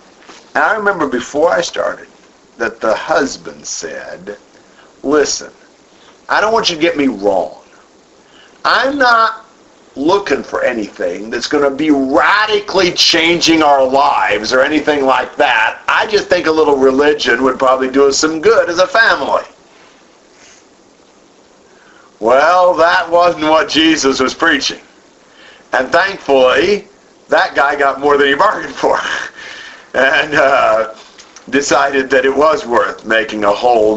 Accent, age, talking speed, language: American, 50-69, 140 wpm, English